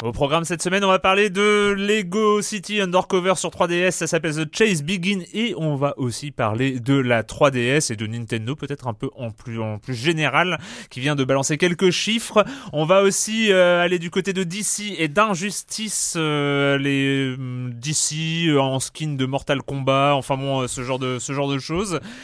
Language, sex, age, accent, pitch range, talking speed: French, male, 30-49, French, 130-180 Hz, 195 wpm